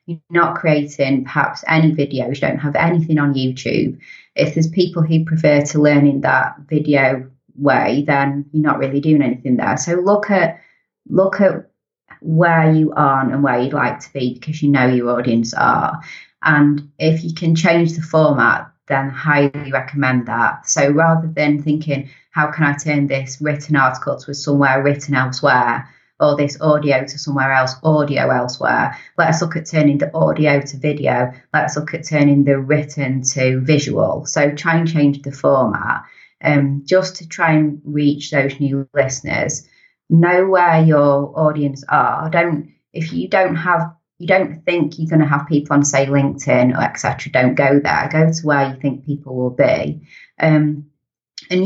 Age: 20-39